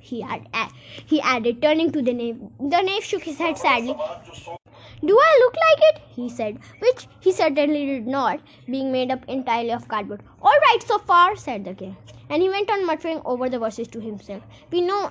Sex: female